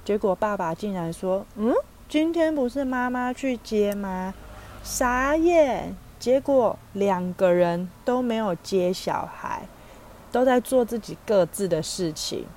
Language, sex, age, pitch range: Chinese, female, 30-49, 175-245 Hz